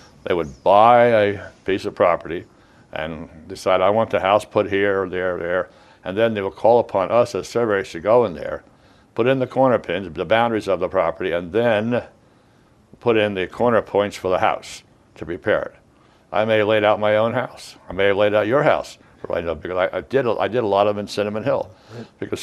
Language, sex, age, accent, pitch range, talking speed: English, male, 60-79, American, 90-105 Hz, 220 wpm